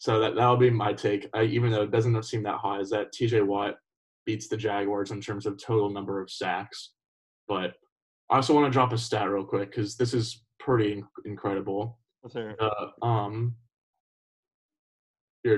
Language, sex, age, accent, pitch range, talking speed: English, male, 20-39, American, 100-115 Hz, 180 wpm